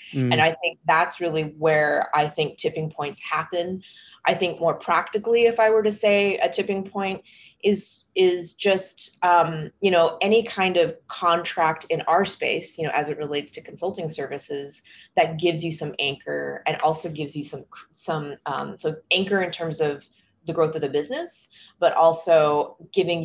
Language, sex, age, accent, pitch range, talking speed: English, female, 20-39, American, 145-175 Hz, 180 wpm